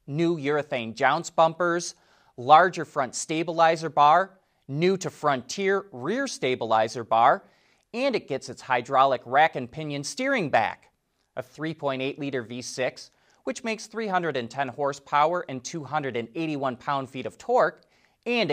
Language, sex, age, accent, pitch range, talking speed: English, male, 30-49, American, 130-190 Hz, 125 wpm